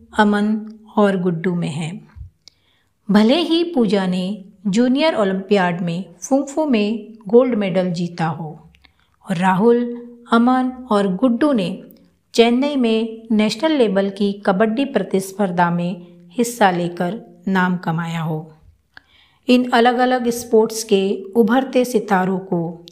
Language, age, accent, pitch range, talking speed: Hindi, 50-69, native, 185-240 Hz, 120 wpm